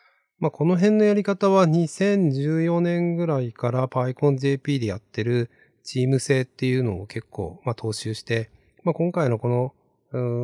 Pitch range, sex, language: 110-160 Hz, male, Japanese